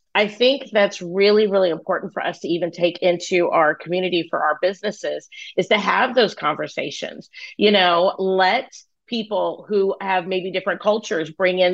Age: 40-59